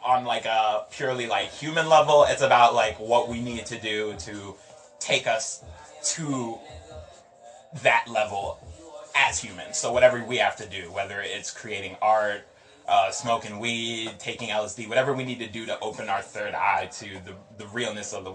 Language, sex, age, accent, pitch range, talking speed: English, male, 20-39, American, 100-120 Hz, 175 wpm